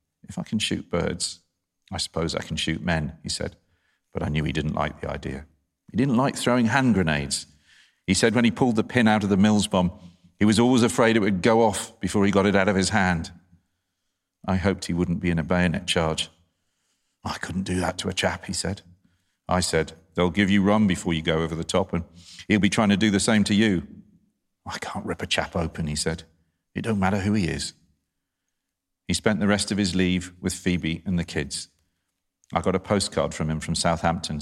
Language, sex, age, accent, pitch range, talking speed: English, male, 40-59, British, 85-95 Hz, 225 wpm